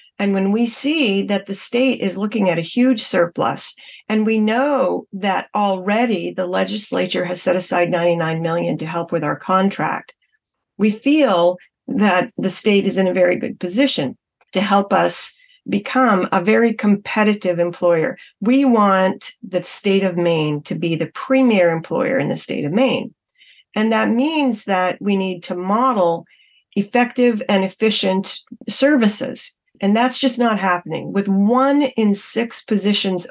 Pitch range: 180-235 Hz